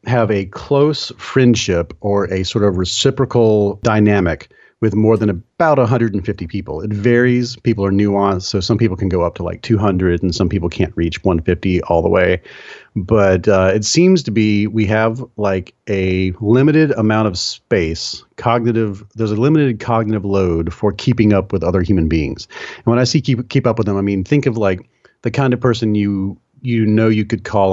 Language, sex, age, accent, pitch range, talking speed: English, male, 40-59, American, 90-115 Hz, 195 wpm